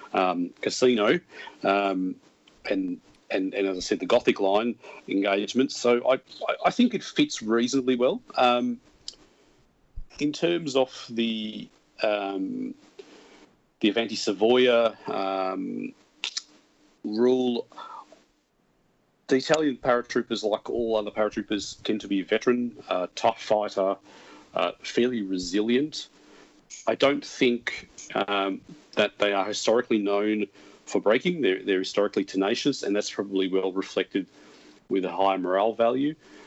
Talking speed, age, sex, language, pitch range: 125 wpm, 40-59, male, English, 100-125 Hz